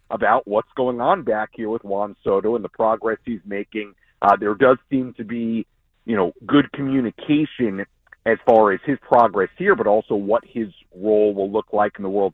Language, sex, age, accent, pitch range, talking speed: English, male, 40-59, American, 105-145 Hz, 200 wpm